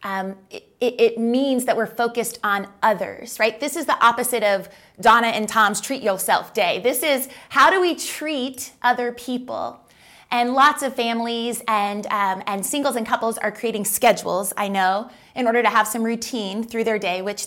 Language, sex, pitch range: English, female, 210-250 Hz